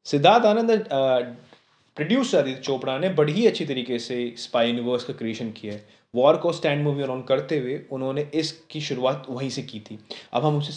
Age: 30-49